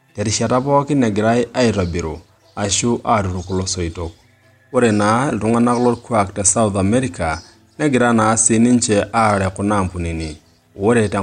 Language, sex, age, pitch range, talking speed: English, male, 30-49, 95-115 Hz, 130 wpm